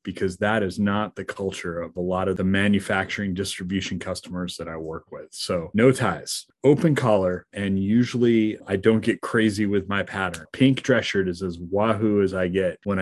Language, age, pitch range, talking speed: English, 30-49, 95-110 Hz, 195 wpm